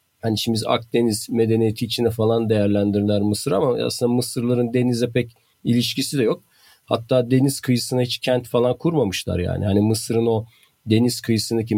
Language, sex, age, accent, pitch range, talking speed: Turkish, male, 50-69, native, 100-125 Hz, 155 wpm